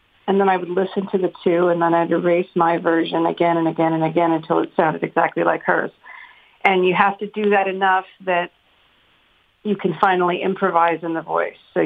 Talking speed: 205 wpm